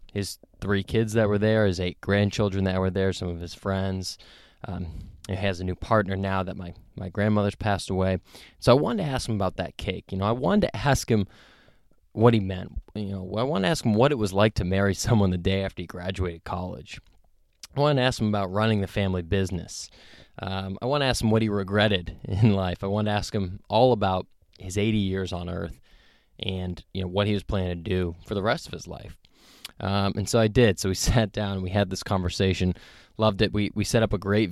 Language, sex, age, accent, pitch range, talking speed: English, male, 20-39, American, 95-110 Hz, 240 wpm